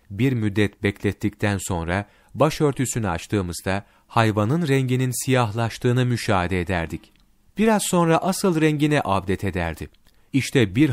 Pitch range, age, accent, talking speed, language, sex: 100-140 Hz, 40-59, native, 105 wpm, Turkish, male